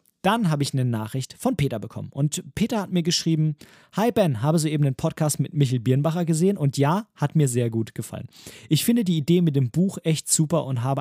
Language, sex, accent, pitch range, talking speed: German, male, German, 130-180 Hz, 225 wpm